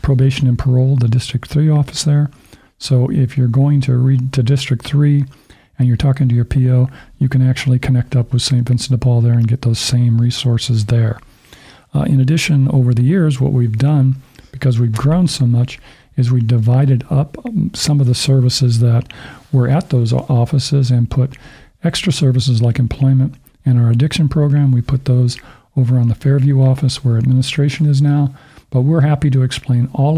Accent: American